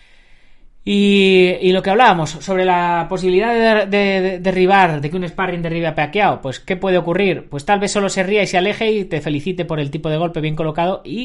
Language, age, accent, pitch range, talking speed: Spanish, 20-39, Spanish, 140-190 Hz, 235 wpm